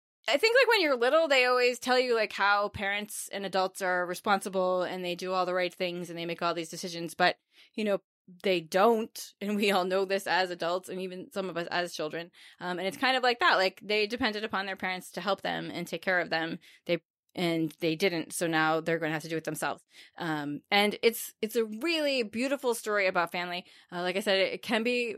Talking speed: 245 wpm